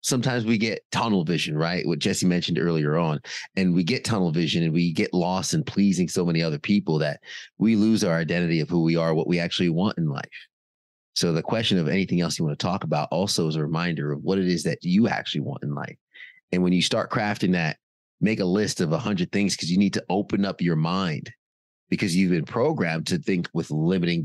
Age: 30-49